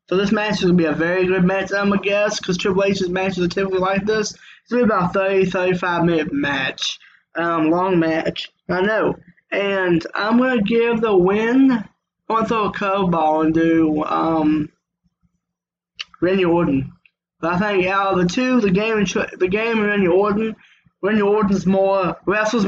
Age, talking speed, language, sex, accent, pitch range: 20-39, 195 wpm, English, male, American, 170-200 Hz